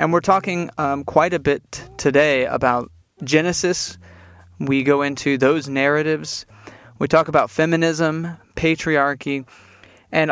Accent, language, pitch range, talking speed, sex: American, English, 130-155 Hz, 120 wpm, male